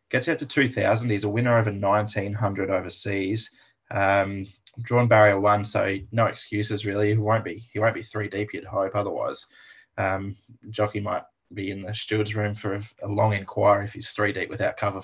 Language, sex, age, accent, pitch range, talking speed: English, male, 20-39, Australian, 100-115 Hz, 180 wpm